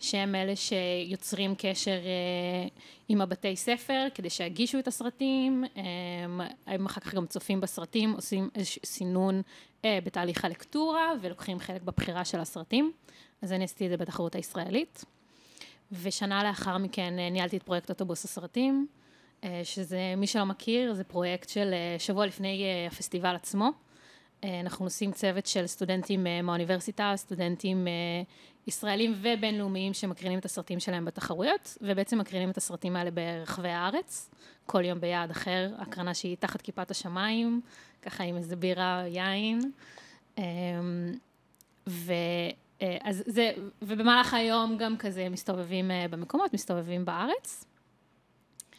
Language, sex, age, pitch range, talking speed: Hebrew, female, 20-39, 180-210 Hz, 135 wpm